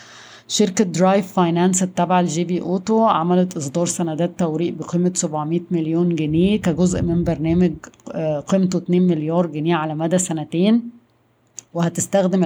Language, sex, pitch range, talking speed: Arabic, female, 160-180 Hz, 125 wpm